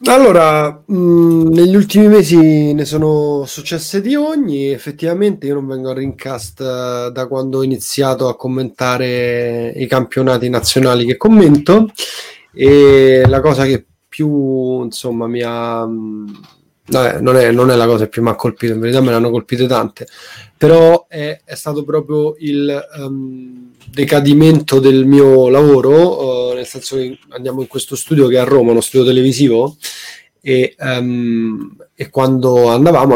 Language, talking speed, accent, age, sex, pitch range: Italian, 150 wpm, native, 20-39, male, 125-150 Hz